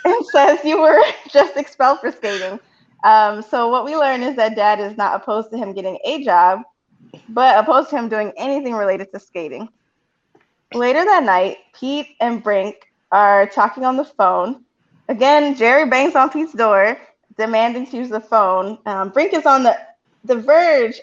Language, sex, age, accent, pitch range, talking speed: English, female, 20-39, American, 205-275 Hz, 175 wpm